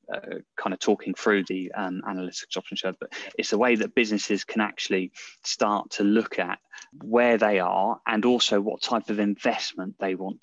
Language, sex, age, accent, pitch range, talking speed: English, male, 20-39, British, 95-105 Hz, 190 wpm